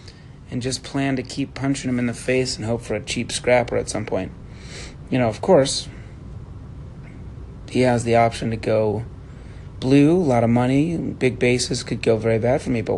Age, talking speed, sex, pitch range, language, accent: 30-49, 200 wpm, male, 110-130 Hz, English, American